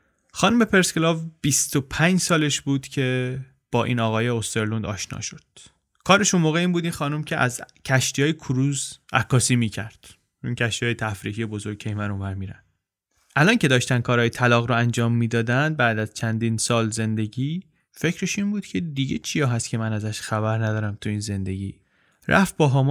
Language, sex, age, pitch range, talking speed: Persian, male, 20-39, 115-140 Hz, 170 wpm